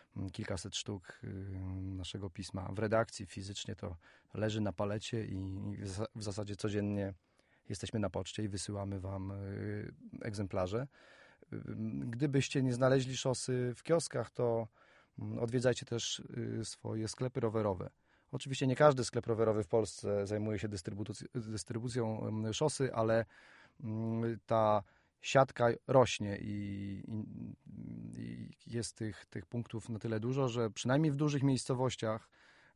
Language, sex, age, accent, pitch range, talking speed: Polish, male, 30-49, native, 100-125 Hz, 115 wpm